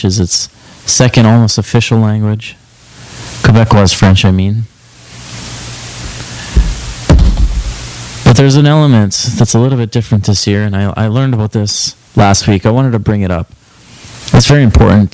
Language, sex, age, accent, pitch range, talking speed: English, male, 30-49, American, 95-120 Hz, 150 wpm